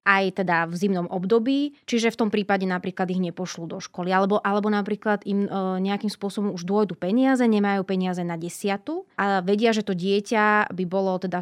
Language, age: Slovak, 20-39